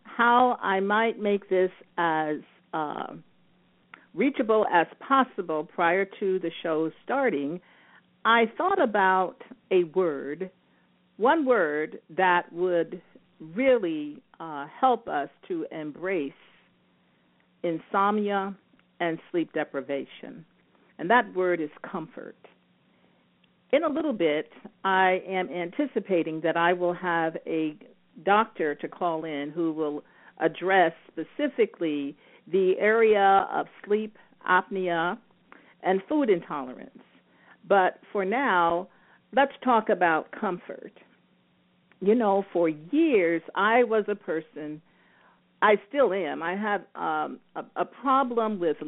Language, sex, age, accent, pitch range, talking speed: English, female, 50-69, American, 165-225 Hz, 115 wpm